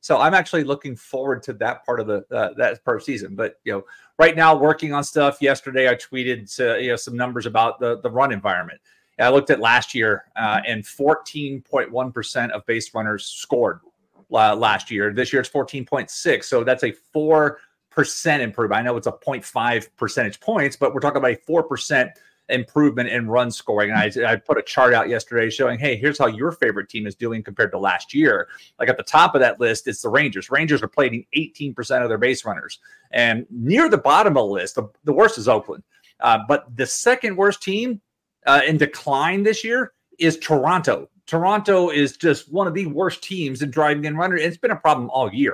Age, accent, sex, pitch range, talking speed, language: 30-49, American, male, 125-180 Hz, 210 wpm, English